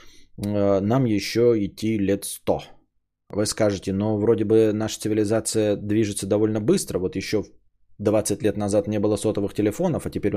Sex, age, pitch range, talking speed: male, 20-39, 105-130 Hz, 155 wpm